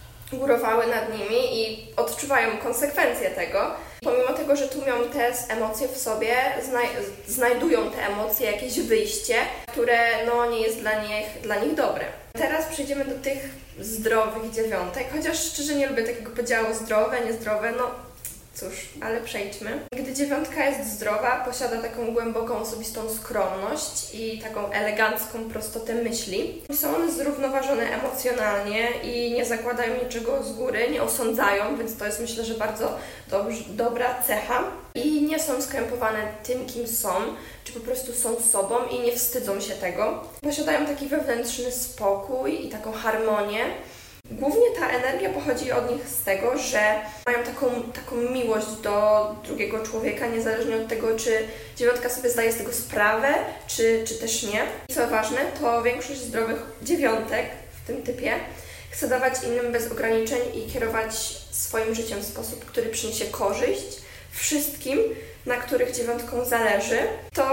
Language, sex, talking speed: Polish, female, 145 wpm